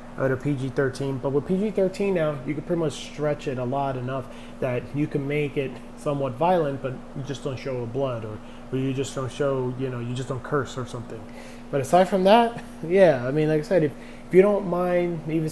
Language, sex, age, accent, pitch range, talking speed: English, male, 20-39, American, 130-160 Hz, 230 wpm